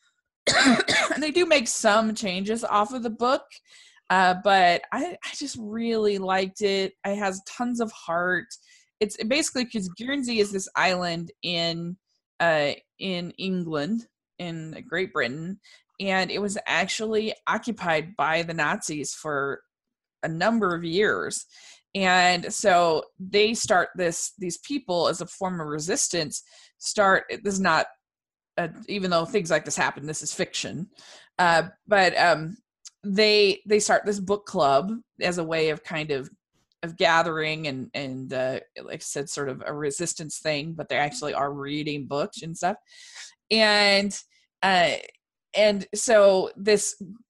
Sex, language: female, English